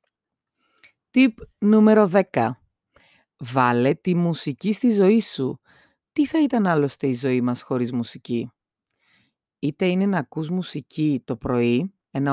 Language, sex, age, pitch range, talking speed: Greek, female, 30-49, 130-190 Hz, 125 wpm